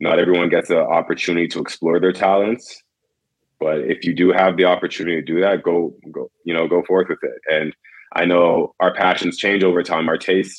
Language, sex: English, male